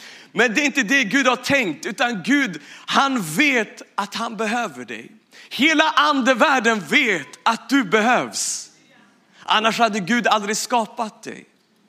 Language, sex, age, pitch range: Swedish, male, 40-59, 220-265 Hz